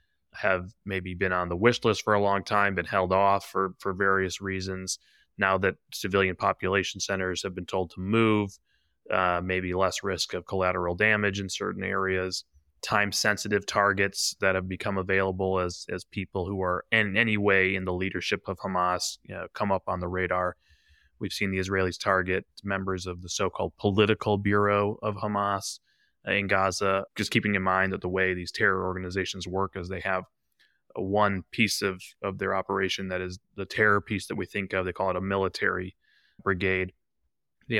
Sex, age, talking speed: male, 20-39, 185 wpm